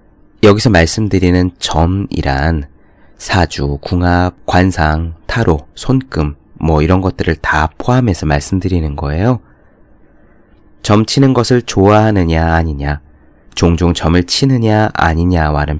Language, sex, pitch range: Korean, male, 80-100 Hz